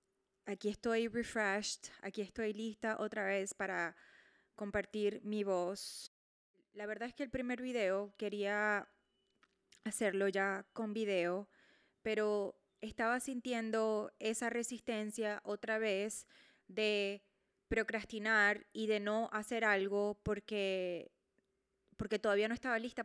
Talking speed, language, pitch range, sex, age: 115 wpm, English, 205-235 Hz, female, 20-39